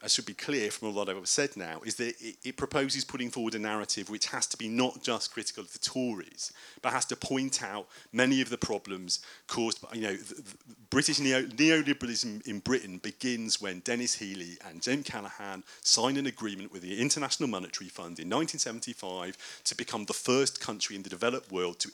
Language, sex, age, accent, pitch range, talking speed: English, male, 40-59, British, 100-125 Hz, 200 wpm